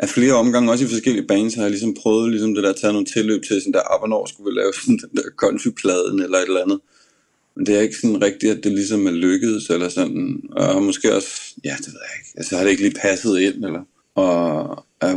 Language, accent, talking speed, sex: Danish, native, 265 wpm, male